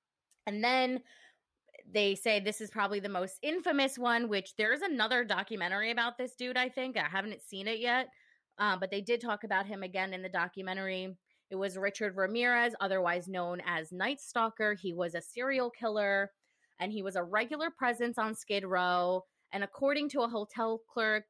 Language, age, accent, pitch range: English, 20-39, American, 195-245 Hz